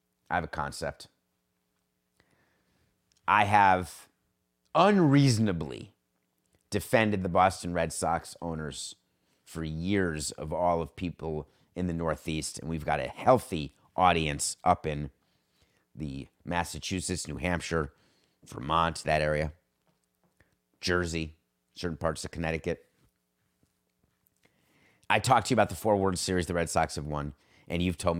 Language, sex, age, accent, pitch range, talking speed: English, male, 30-49, American, 75-95 Hz, 125 wpm